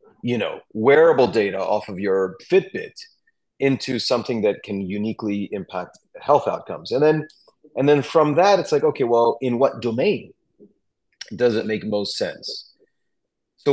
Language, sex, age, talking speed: German, male, 30-49, 155 wpm